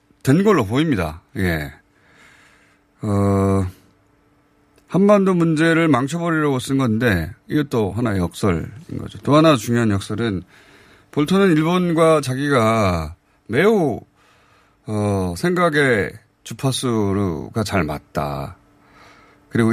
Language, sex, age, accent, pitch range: Korean, male, 30-49, native, 100-150 Hz